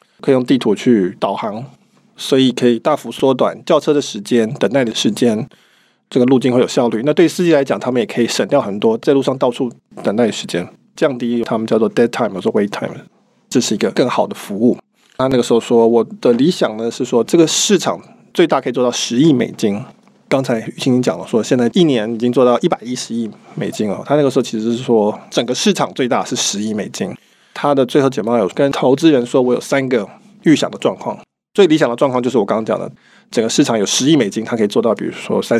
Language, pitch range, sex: Chinese, 120-145 Hz, male